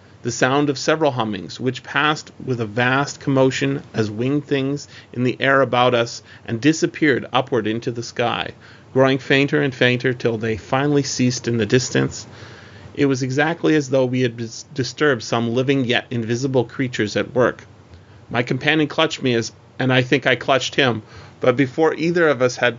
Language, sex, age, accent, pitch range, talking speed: English, male, 30-49, American, 115-140 Hz, 175 wpm